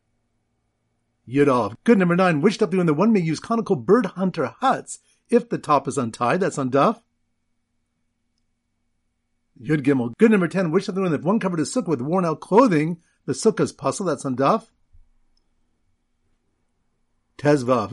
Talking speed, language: 155 wpm, English